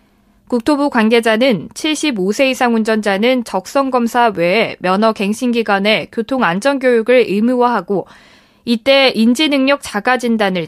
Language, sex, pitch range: Korean, female, 205-260 Hz